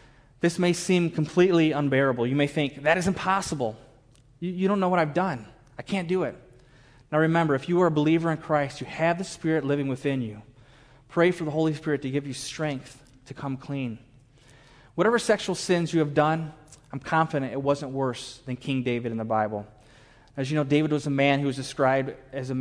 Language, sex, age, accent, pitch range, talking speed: English, male, 20-39, American, 130-155 Hz, 210 wpm